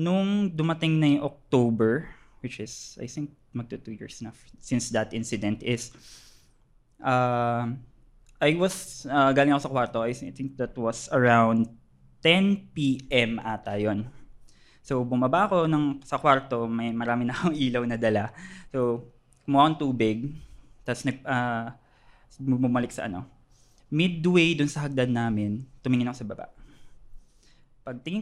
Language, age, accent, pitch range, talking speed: Filipino, 20-39, native, 120-165 Hz, 135 wpm